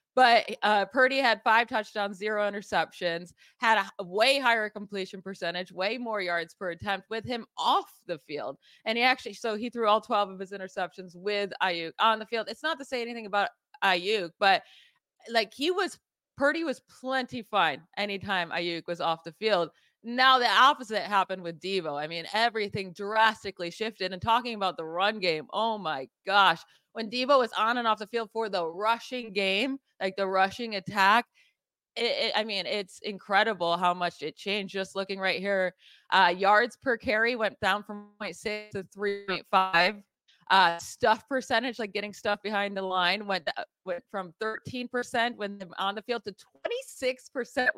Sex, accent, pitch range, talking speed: female, American, 190-230 Hz, 175 wpm